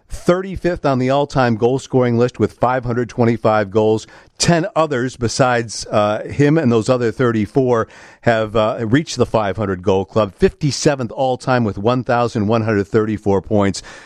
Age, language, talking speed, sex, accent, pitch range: 50-69, English, 125 wpm, male, American, 115-150 Hz